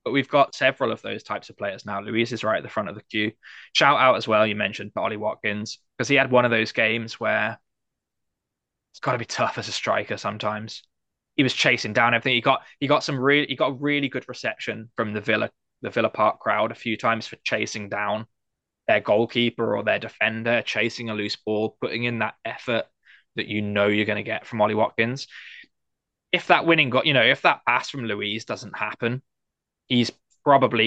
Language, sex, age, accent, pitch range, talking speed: English, male, 10-29, British, 110-130 Hz, 220 wpm